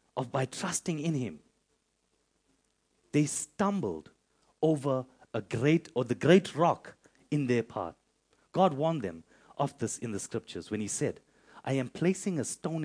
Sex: male